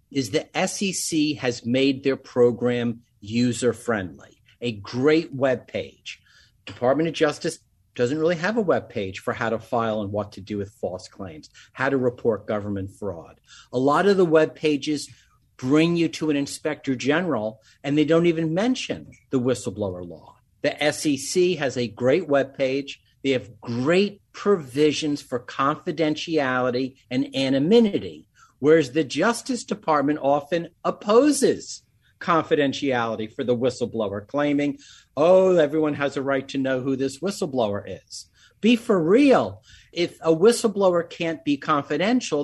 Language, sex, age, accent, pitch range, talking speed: English, male, 50-69, American, 125-170 Hz, 140 wpm